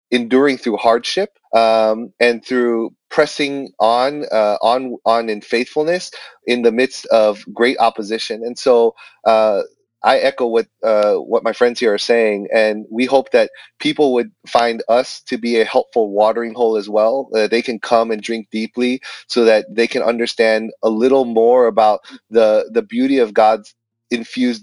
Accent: American